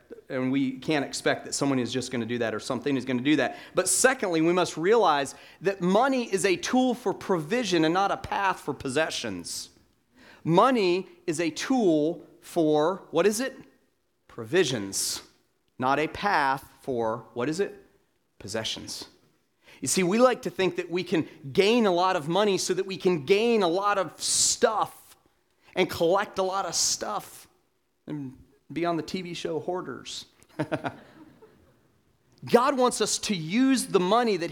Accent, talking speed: American, 170 wpm